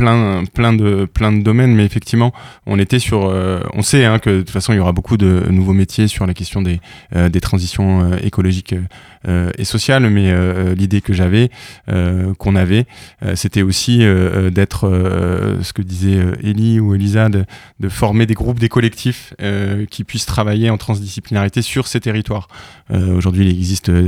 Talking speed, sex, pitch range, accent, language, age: 195 wpm, male, 95-110 Hz, French, French, 20-39